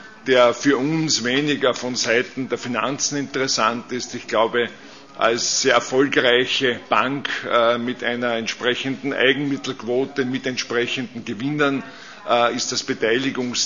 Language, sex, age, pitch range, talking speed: Czech, male, 50-69, 125-145 Hz, 115 wpm